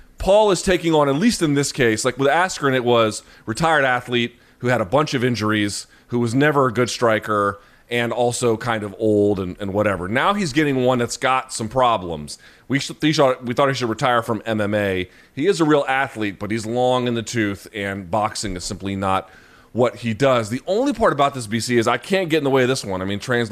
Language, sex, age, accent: English, male, 30-49, American